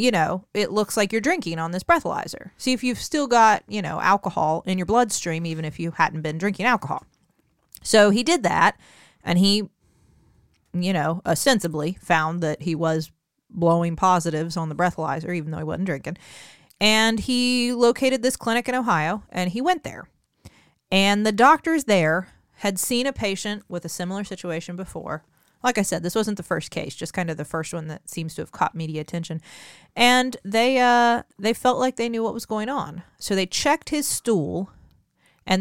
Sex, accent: female, American